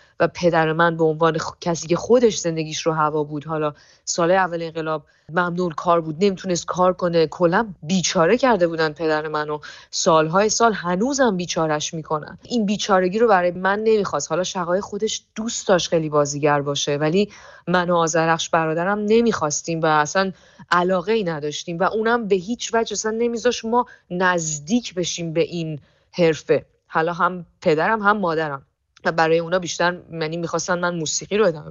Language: Persian